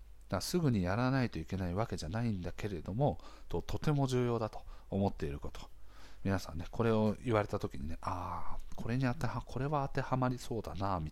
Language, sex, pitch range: Japanese, male, 85-120 Hz